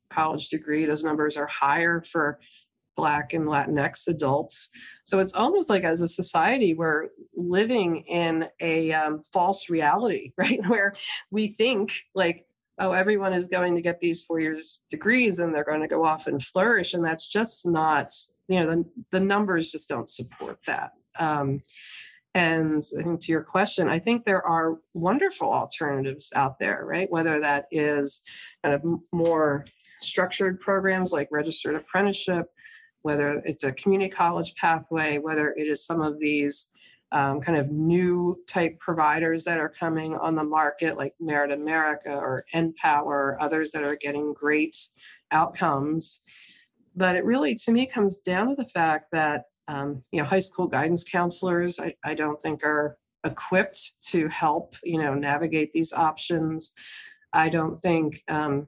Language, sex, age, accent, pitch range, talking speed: English, female, 40-59, American, 150-185 Hz, 160 wpm